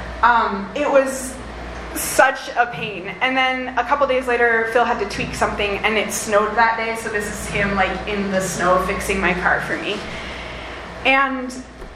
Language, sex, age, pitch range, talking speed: English, female, 20-39, 205-255 Hz, 180 wpm